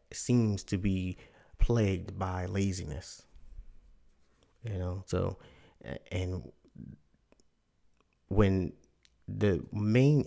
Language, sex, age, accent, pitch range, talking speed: English, male, 30-49, American, 80-100 Hz, 75 wpm